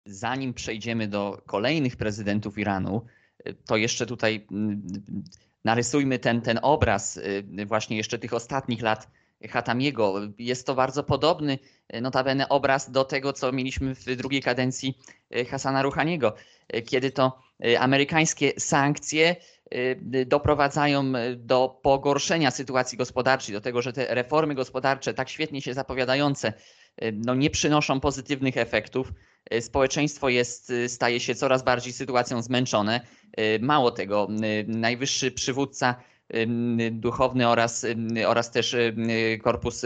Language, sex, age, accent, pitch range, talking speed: Polish, male, 20-39, native, 115-135 Hz, 115 wpm